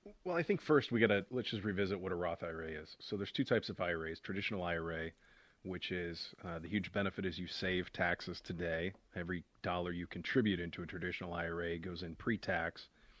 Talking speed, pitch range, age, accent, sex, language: 205 wpm, 85-105 Hz, 40-59, American, male, English